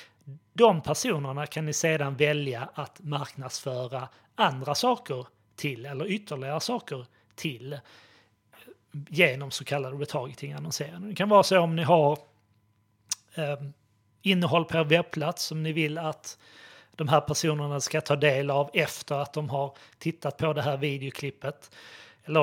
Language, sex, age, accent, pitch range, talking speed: Swedish, male, 30-49, native, 125-155 Hz, 140 wpm